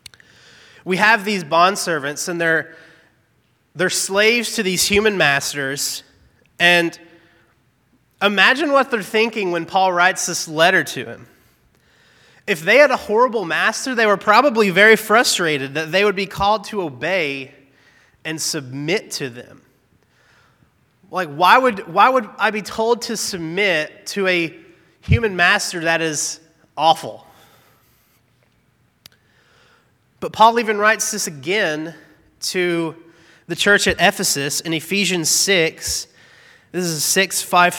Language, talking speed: English, 130 wpm